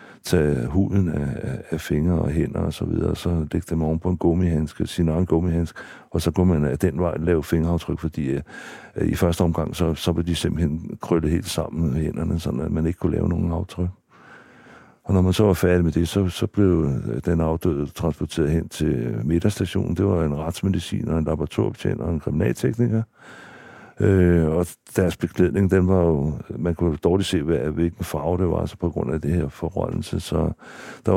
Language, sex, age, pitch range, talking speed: Danish, male, 60-79, 80-95 Hz, 195 wpm